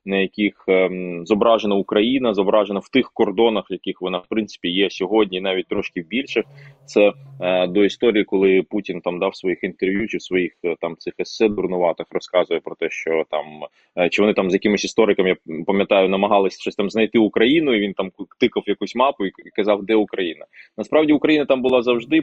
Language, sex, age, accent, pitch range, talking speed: Ukrainian, male, 20-39, native, 95-115 Hz, 185 wpm